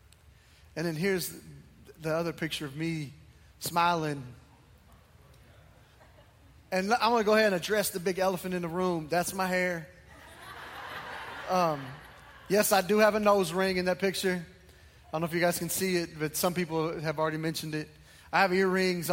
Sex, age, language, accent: male, 20-39, English, American